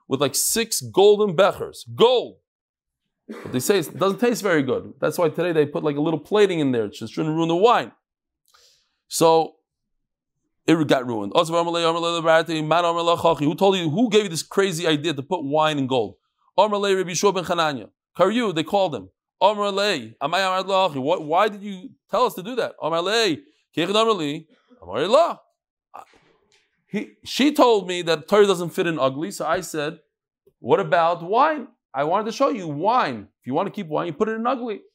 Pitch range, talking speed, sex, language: 155-215 Hz, 160 wpm, male, English